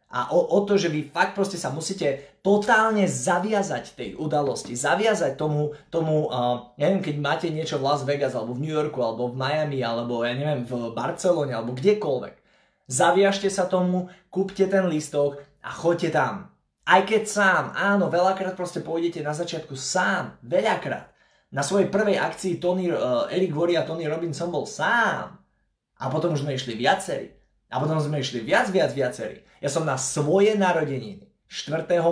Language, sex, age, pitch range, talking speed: Slovak, male, 20-39, 125-180 Hz, 170 wpm